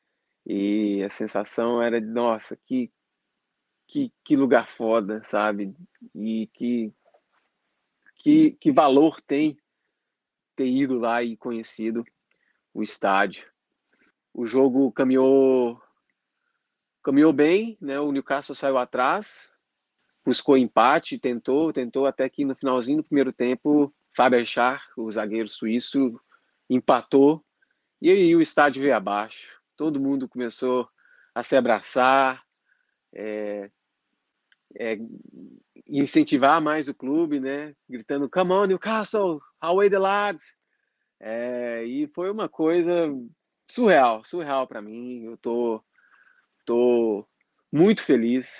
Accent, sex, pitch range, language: Brazilian, male, 115-155 Hz, Portuguese